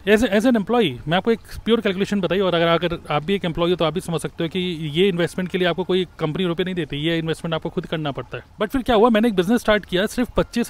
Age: 30-49